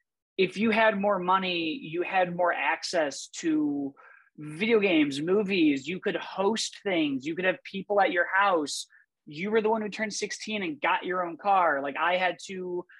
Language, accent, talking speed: English, American, 185 wpm